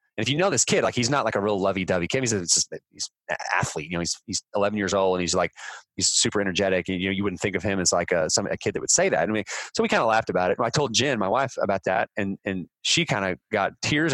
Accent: American